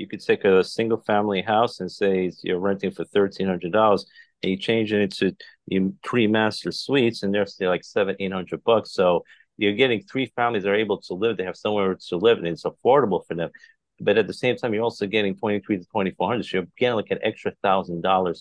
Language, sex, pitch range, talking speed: English, male, 95-115 Hz, 205 wpm